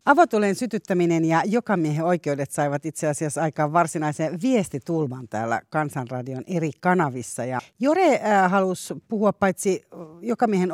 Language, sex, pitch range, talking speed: Finnish, female, 140-200 Hz, 110 wpm